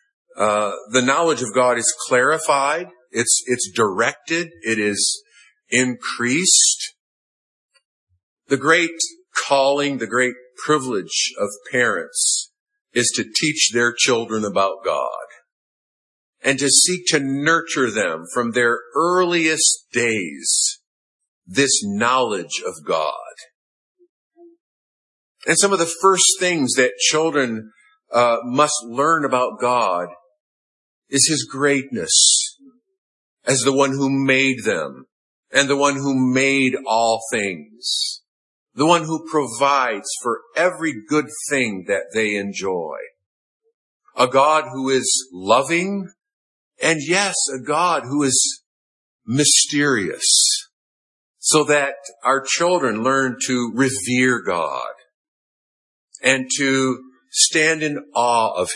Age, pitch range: 50-69, 125-180 Hz